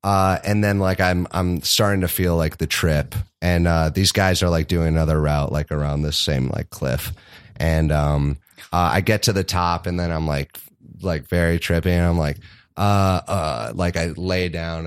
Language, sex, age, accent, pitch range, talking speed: English, male, 30-49, American, 80-100 Hz, 205 wpm